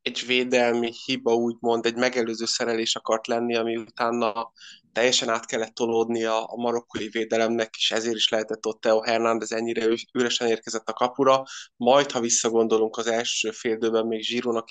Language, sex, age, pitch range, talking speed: Hungarian, male, 20-39, 115-125 Hz, 155 wpm